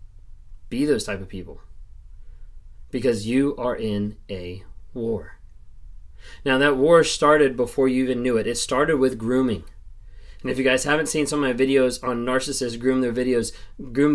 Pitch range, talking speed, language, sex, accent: 105-135 Hz, 170 wpm, English, male, American